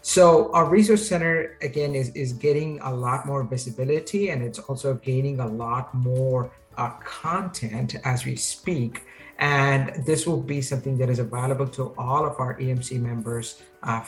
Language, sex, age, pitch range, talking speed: English, male, 50-69, 125-145 Hz, 165 wpm